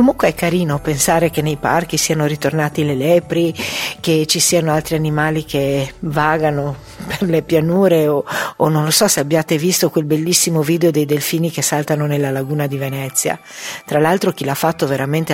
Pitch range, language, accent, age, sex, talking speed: 140-170 Hz, Italian, native, 50-69, female, 180 wpm